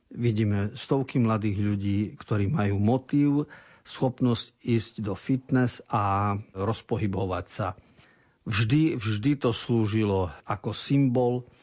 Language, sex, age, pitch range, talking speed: Slovak, male, 50-69, 105-120 Hz, 105 wpm